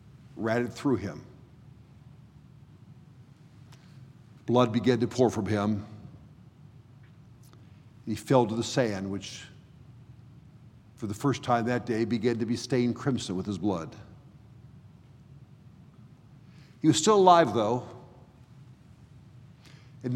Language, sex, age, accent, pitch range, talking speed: English, male, 50-69, American, 120-140 Hz, 105 wpm